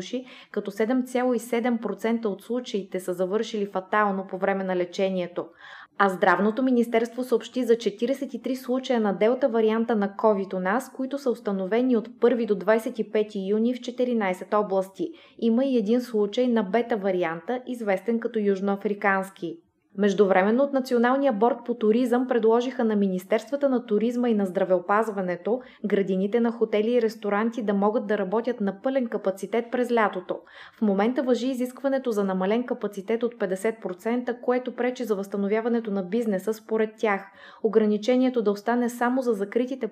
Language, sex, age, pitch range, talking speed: Bulgarian, female, 20-39, 200-245 Hz, 145 wpm